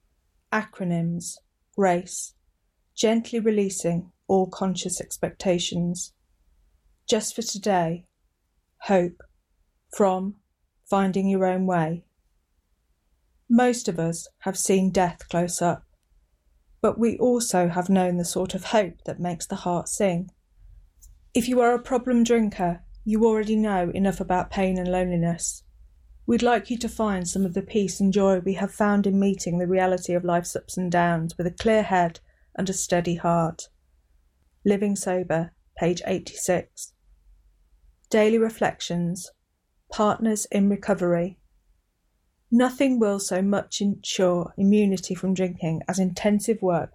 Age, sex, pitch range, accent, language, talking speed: 40-59, female, 170-200 Hz, British, English, 130 wpm